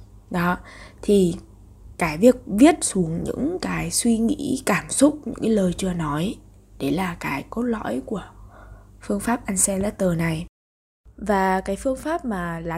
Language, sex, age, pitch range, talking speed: Vietnamese, female, 20-39, 170-220 Hz, 155 wpm